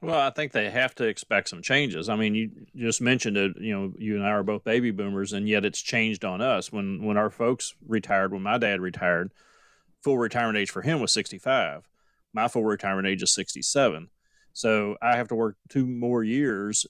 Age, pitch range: 30-49, 100-120 Hz